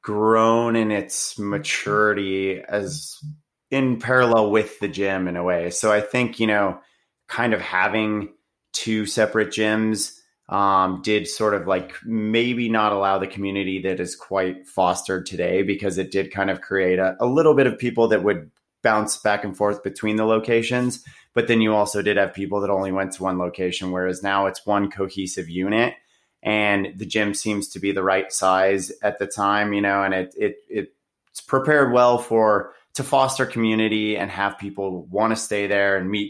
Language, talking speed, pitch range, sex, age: English, 185 wpm, 95-110 Hz, male, 30-49